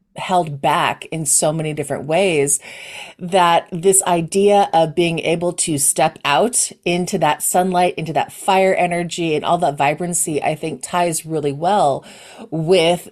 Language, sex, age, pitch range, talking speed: English, female, 30-49, 150-190 Hz, 150 wpm